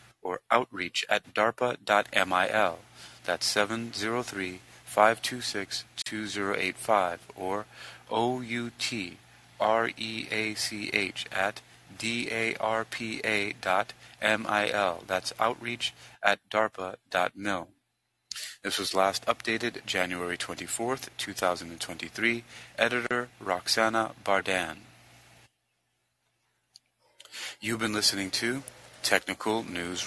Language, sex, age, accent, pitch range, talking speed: English, male, 30-49, American, 95-115 Hz, 120 wpm